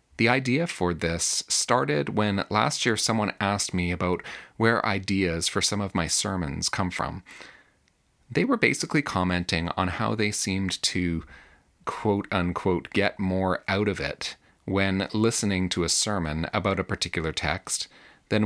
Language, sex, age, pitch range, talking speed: English, male, 30-49, 85-105 Hz, 150 wpm